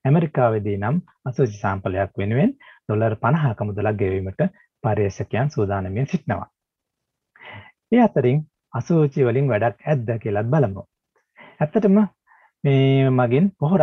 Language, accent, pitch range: Japanese, Indian, 105-150 Hz